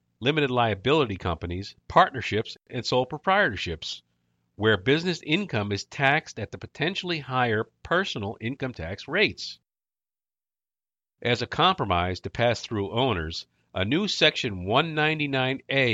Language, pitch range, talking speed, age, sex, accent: English, 90-140 Hz, 115 wpm, 50-69, male, American